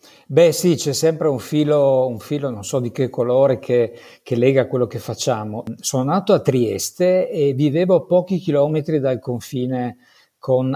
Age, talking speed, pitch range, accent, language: 50-69, 160 wpm, 125-160 Hz, native, Italian